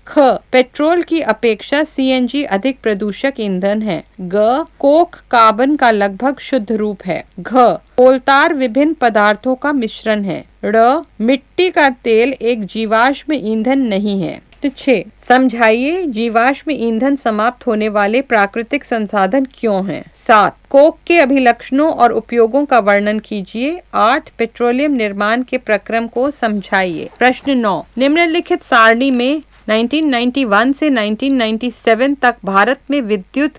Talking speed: 110 wpm